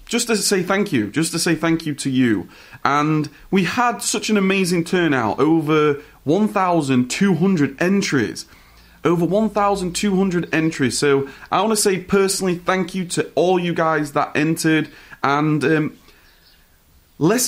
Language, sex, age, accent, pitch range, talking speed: English, male, 30-49, British, 130-180 Hz, 145 wpm